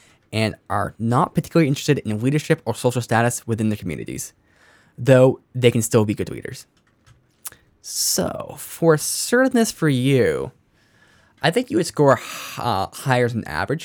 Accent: American